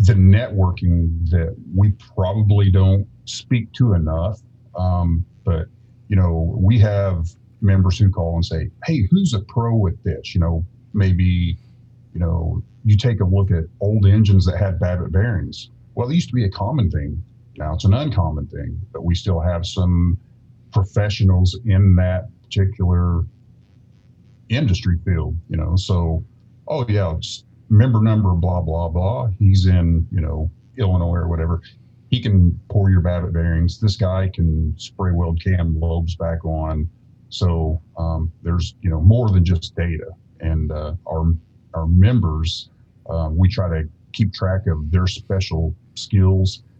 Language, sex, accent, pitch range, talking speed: English, male, American, 85-115 Hz, 155 wpm